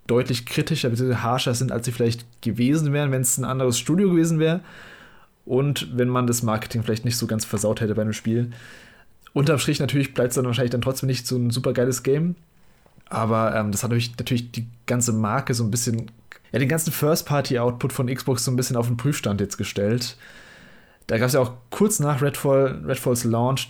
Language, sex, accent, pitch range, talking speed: German, male, German, 120-145 Hz, 205 wpm